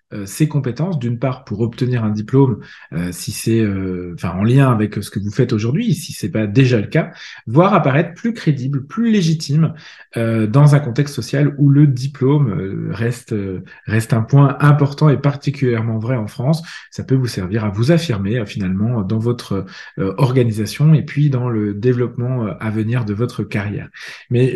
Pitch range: 115-155 Hz